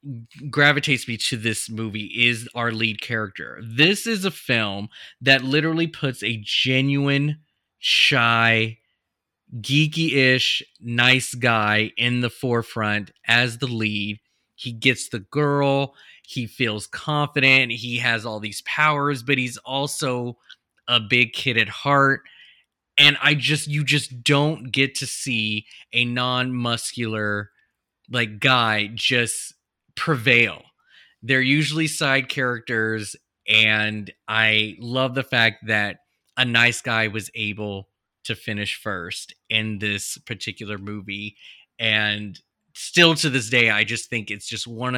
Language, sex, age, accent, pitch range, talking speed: English, male, 20-39, American, 110-135 Hz, 130 wpm